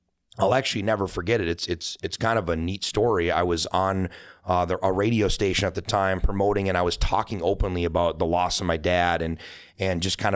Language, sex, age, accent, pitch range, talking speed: English, male, 30-49, American, 90-100 Hz, 230 wpm